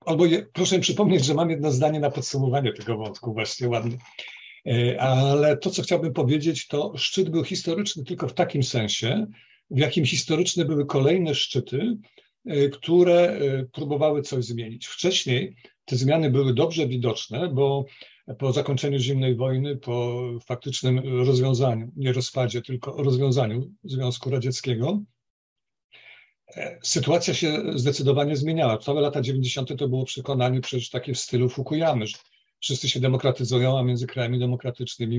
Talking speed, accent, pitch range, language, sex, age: 135 wpm, native, 125-150 Hz, Polish, male, 50-69